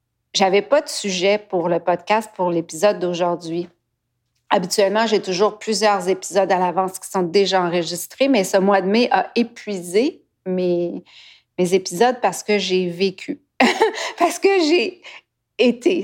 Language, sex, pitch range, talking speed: French, female, 180-210 Hz, 145 wpm